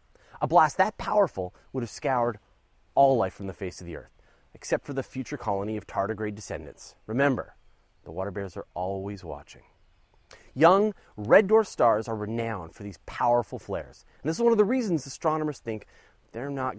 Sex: male